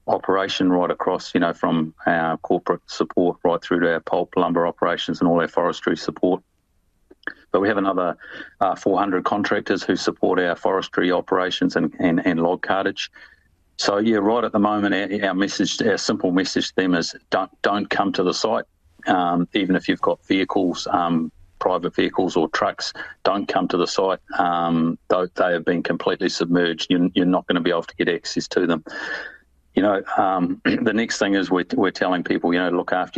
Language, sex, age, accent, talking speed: English, male, 40-59, Australian, 195 wpm